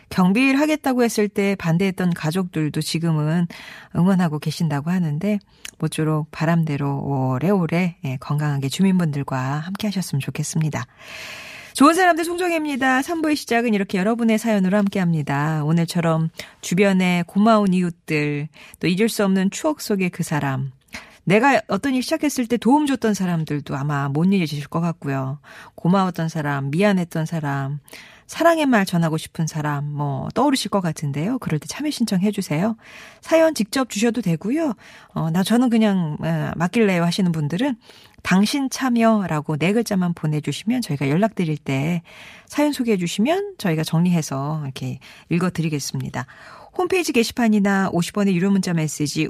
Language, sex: Korean, female